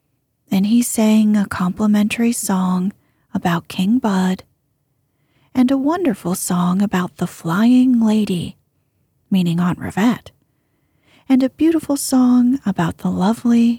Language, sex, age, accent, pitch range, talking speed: English, female, 30-49, American, 150-240 Hz, 115 wpm